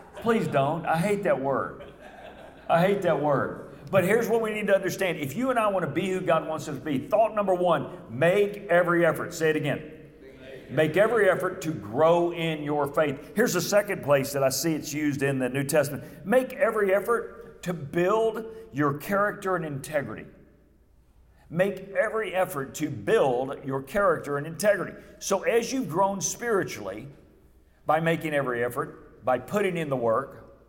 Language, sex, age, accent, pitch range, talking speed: English, male, 50-69, American, 140-195 Hz, 180 wpm